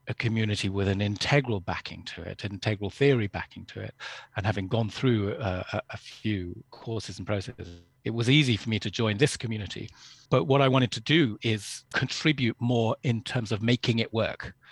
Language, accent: English, British